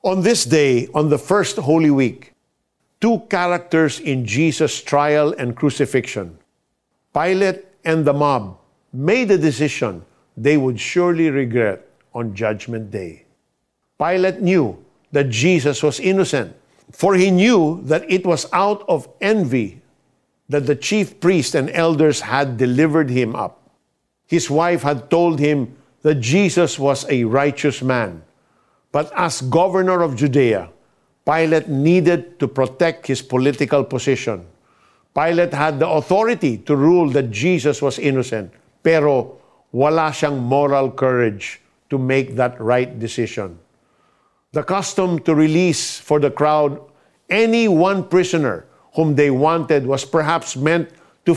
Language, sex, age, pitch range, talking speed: Filipino, male, 50-69, 135-175 Hz, 135 wpm